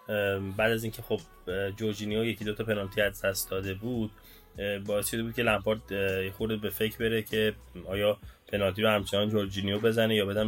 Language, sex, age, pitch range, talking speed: Persian, male, 20-39, 100-115 Hz, 165 wpm